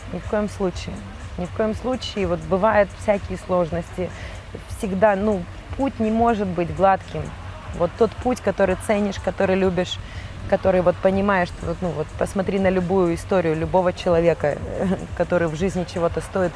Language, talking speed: Russian, 155 wpm